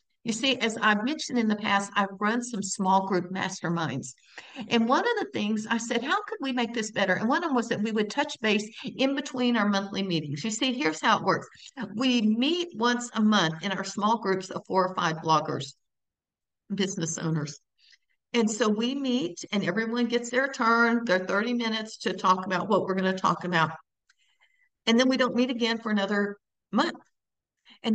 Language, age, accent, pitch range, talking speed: English, 60-79, American, 200-255 Hz, 205 wpm